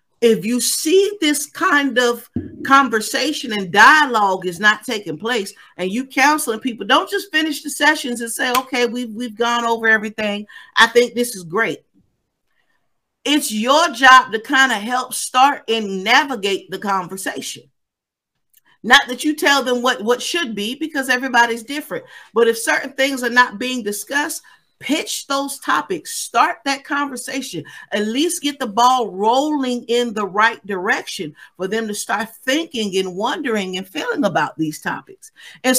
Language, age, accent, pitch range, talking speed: English, 50-69, American, 205-275 Hz, 160 wpm